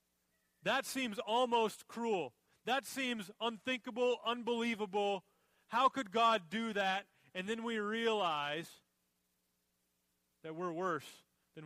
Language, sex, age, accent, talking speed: English, male, 30-49, American, 110 wpm